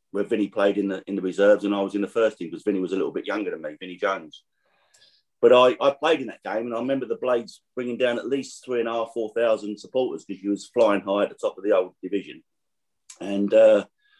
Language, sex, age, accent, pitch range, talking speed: English, male, 30-49, British, 100-135 Hz, 270 wpm